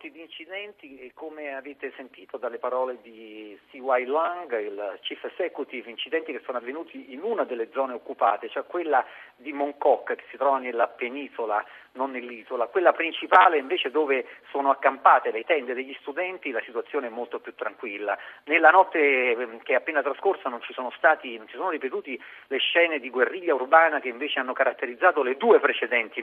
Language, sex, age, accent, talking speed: Italian, male, 40-59, native, 175 wpm